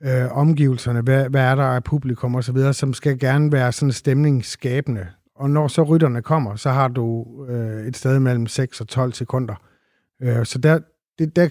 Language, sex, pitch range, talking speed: Danish, male, 125-145 Hz, 180 wpm